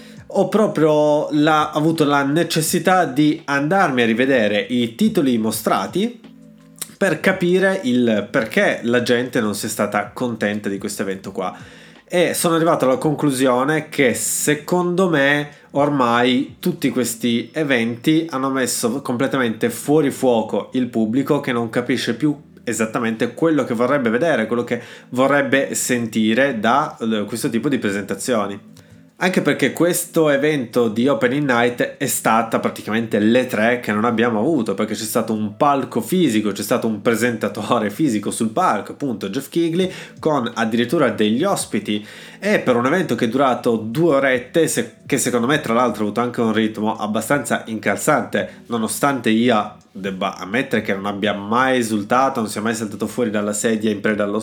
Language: Italian